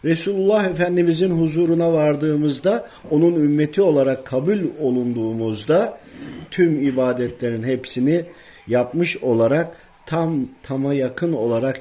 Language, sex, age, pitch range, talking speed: Turkish, male, 50-69, 110-150 Hz, 90 wpm